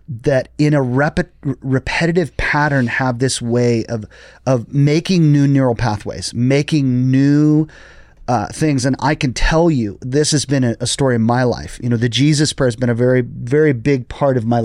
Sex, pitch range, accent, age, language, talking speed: male, 115-150 Hz, American, 30-49, English, 195 wpm